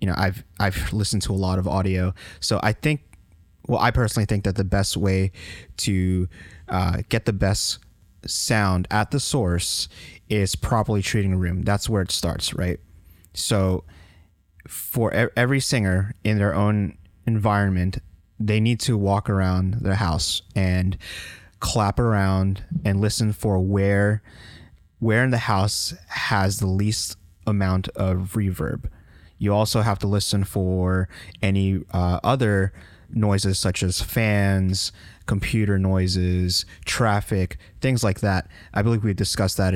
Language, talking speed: English, 145 wpm